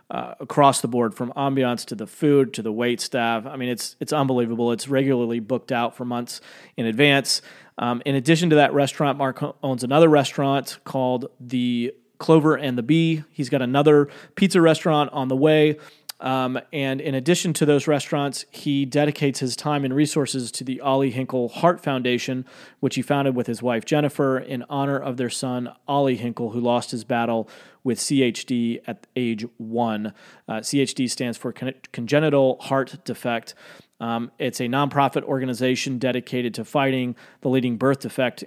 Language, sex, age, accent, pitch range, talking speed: English, male, 30-49, American, 120-140 Hz, 175 wpm